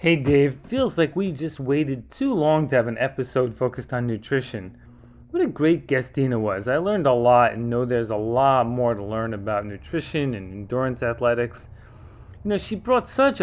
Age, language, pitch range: 30-49, English, 125-180 Hz